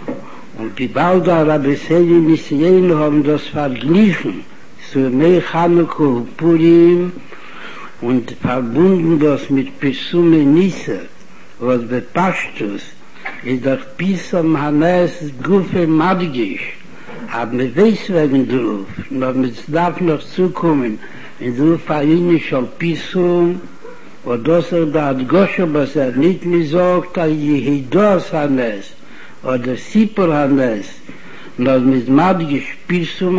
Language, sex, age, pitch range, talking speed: Hebrew, male, 60-79, 145-175 Hz, 110 wpm